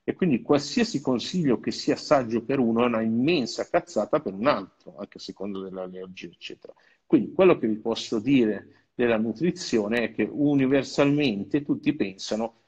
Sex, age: male, 50-69